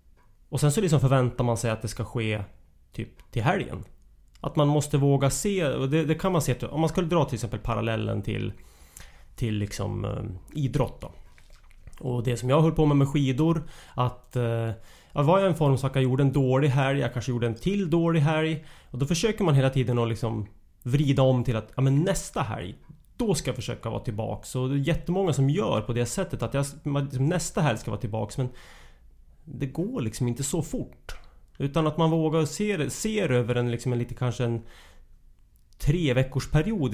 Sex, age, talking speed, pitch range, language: male, 30-49, 210 wpm, 110-155 Hz, English